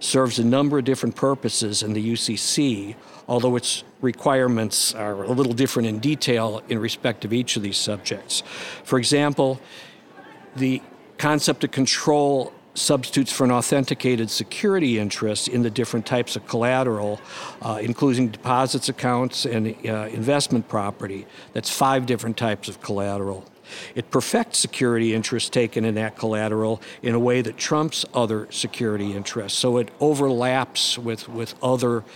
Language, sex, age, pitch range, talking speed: English, male, 50-69, 115-135 Hz, 145 wpm